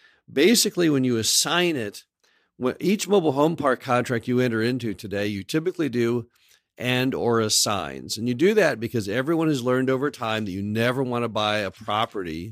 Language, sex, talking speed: English, male, 180 wpm